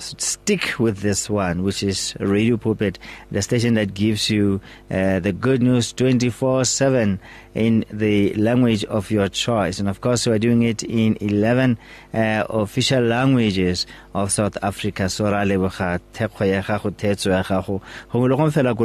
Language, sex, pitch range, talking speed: English, male, 100-120 Hz, 135 wpm